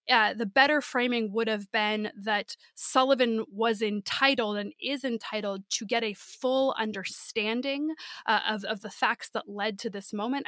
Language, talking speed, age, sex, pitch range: English, 165 wpm, 20-39, female, 205-240 Hz